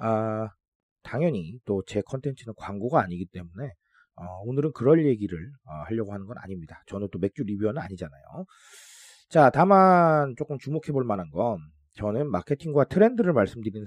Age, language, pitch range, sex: 30-49, Korean, 105-170 Hz, male